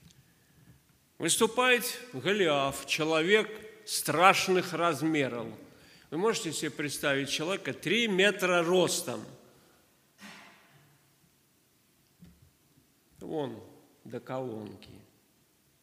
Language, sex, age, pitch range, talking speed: Russian, male, 50-69, 135-185 Hz, 60 wpm